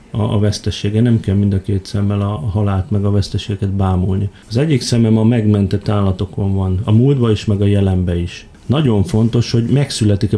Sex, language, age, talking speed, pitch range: male, Hungarian, 30-49, 185 wpm, 100-115 Hz